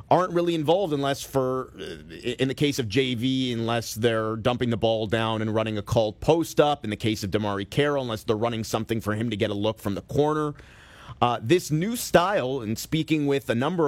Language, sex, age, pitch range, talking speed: English, male, 30-49, 120-155 Hz, 210 wpm